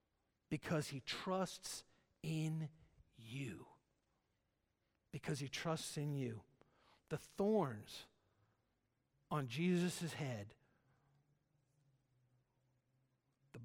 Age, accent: 50-69, American